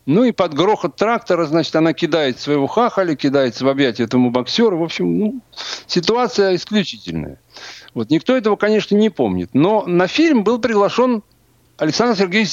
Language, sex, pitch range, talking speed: Russian, male, 135-210 Hz, 160 wpm